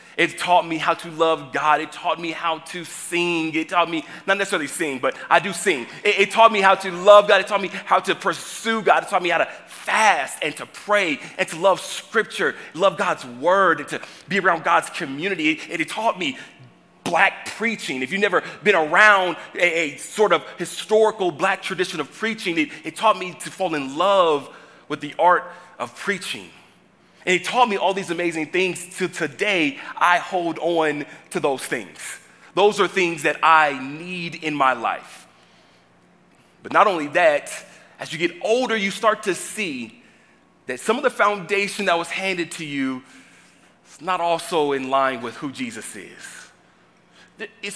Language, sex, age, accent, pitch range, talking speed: English, male, 30-49, American, 160-200 Hz, 190 wpm